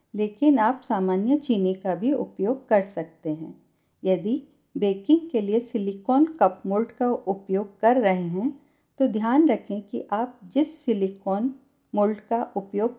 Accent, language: native, Hindi